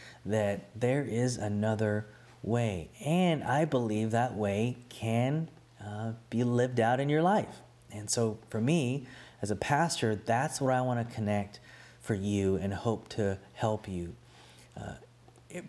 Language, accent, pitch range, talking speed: English, American, 105-125 Hz, 145 wpm